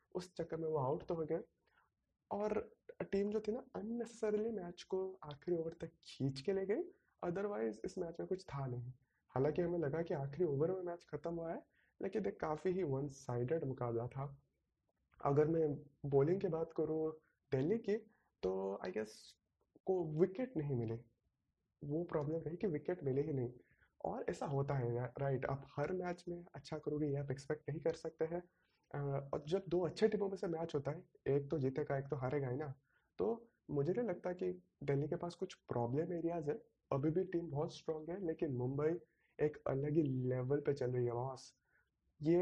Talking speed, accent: 190 wpm, native